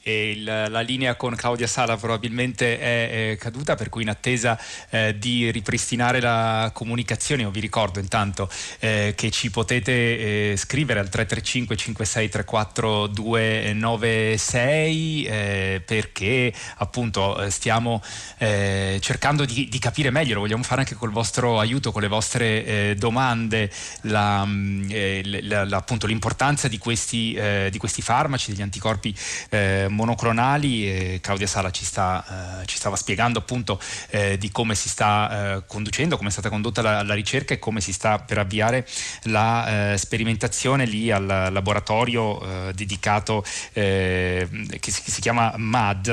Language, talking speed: Italian, 150 wpm